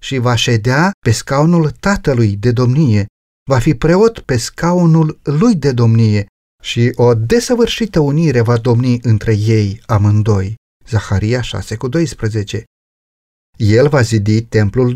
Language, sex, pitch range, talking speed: Romanian, male, 115-170 Hz, 125 wpm